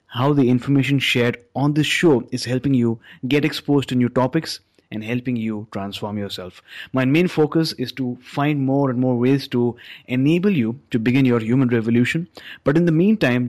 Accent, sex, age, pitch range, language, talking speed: Indian, male, 30-49, 115-140 Hz, English, 185 wpm